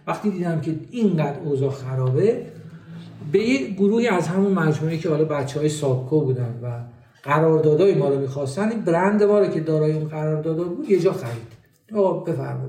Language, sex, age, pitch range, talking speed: Persian, male, 50-69, 140-195 Hz, 160 wpm